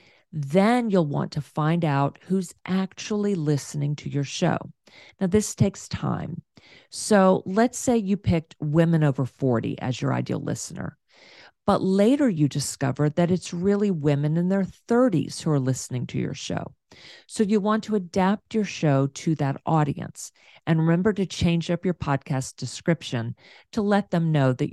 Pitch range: 140-195 Hz